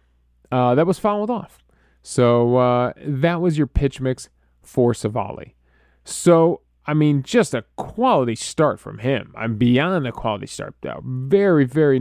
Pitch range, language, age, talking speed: 110-170 Hz, English, 20-39, 155 wpm